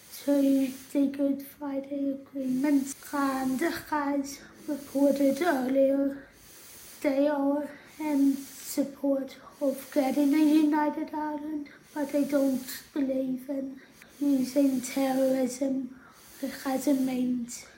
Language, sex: English, female